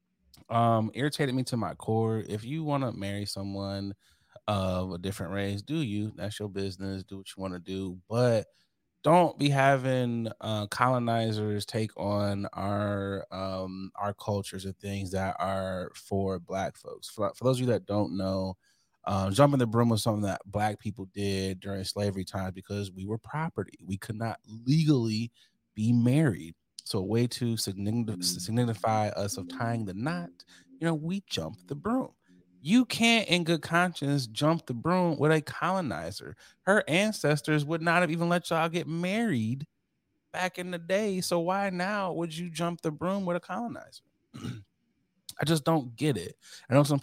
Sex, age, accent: male, 20-39, American